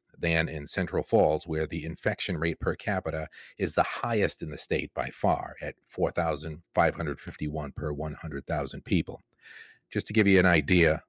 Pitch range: 80-100 Hz